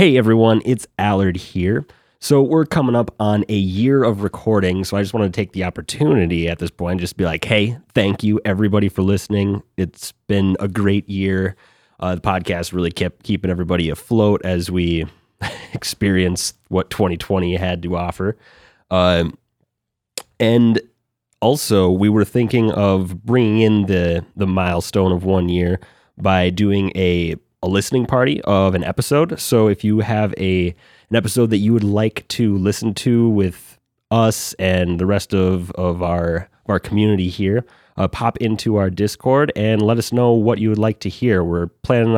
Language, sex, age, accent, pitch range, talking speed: English, male, 30-49, American, 90-110 Hz, 175 wpm